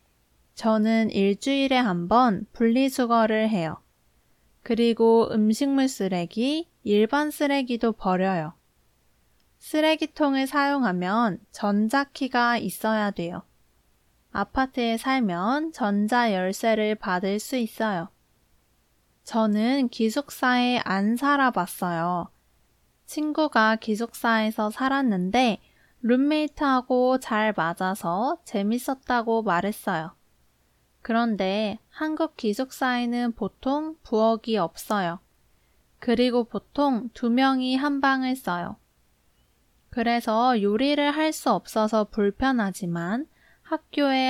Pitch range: 195-260 Hz